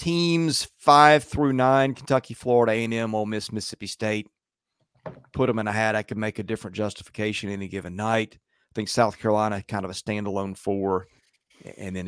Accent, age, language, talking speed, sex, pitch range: American, 30-49, English, 185 wpm, male, 100-130 Hz